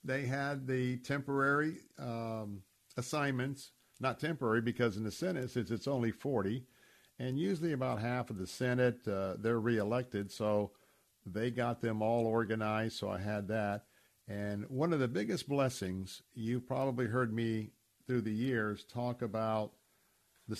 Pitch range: 105-125 Hz